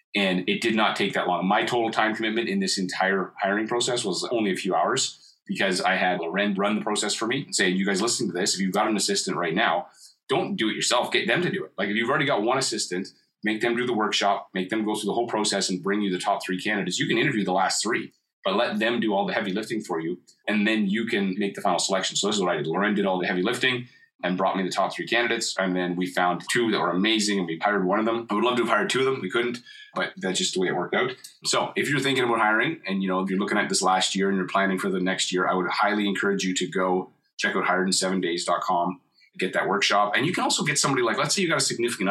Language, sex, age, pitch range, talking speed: English, male, 30-49, 95-110 Hz, 295 wpm